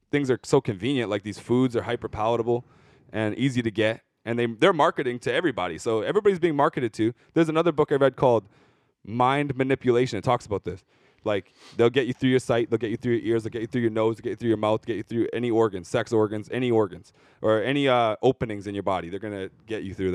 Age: 20-39